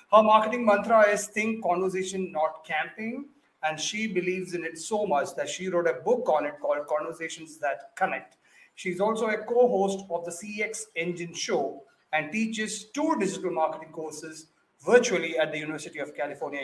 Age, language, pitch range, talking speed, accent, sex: 30-49, English, 165-210 Hz, 170 wpm, Indian, male